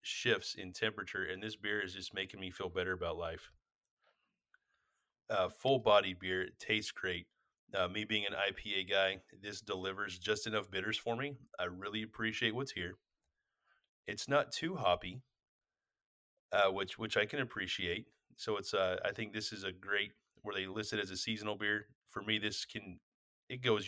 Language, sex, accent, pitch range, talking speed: English, male, American, 95-110 Hz, 180 wpm